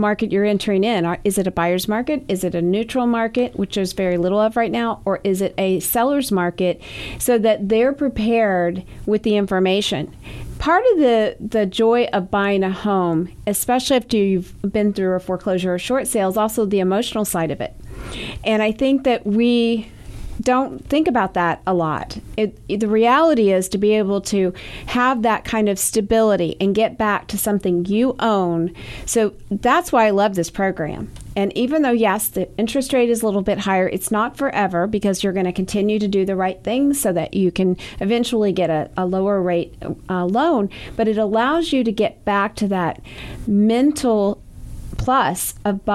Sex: female